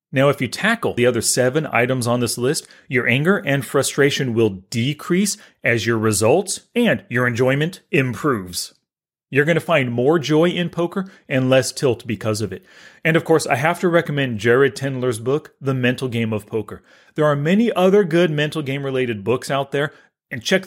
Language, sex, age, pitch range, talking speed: English, male, 30-49, 125-170 Hz, 190 wpm